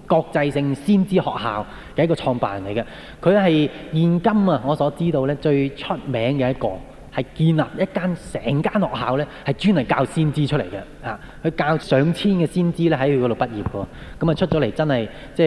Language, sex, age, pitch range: Japanese, male, 20-39, 120-170 Hz